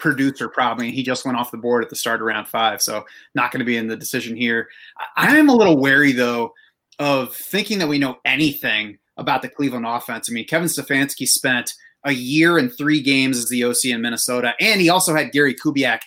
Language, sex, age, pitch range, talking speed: English, male, 30-49, 125-155 Hz, 225 wpm